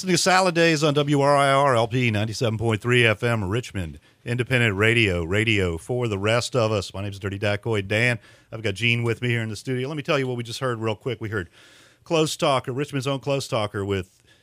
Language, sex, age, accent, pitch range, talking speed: English, male, 40-59, American, 100-125 Hz, 210 wpm